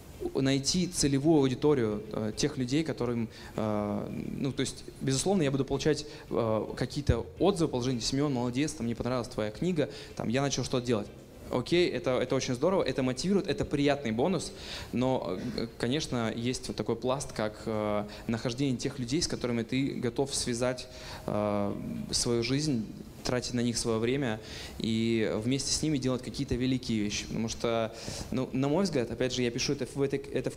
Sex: male